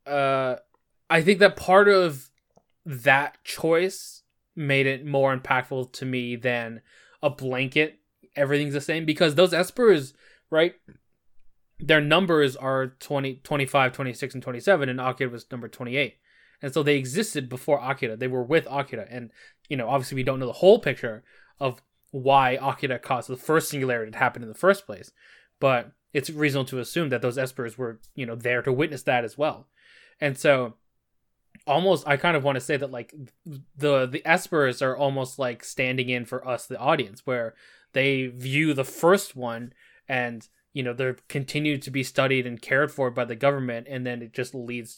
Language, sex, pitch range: English, male, 125-150 Hz